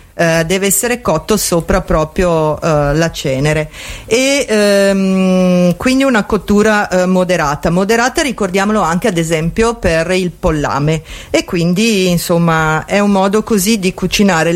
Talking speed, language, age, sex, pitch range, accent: 120 wpm, Italian, 50-69, female, 160-200 Hz, native